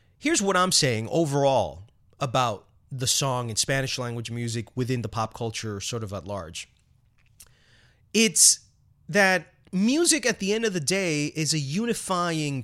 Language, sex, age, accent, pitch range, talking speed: English, male, 30-49, American, 120-180 Hz, 150 wpm